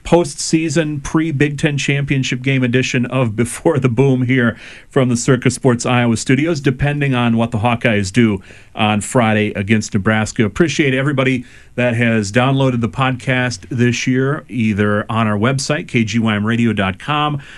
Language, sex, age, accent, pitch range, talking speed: English, male, 40-59, American, 115-140 Hz, 140 wpm